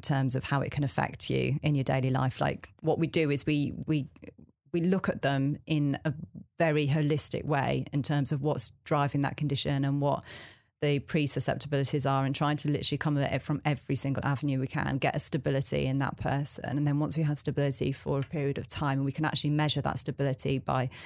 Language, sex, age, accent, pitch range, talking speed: English, female, 30-49, British, 135-150 Hz, 215 wpm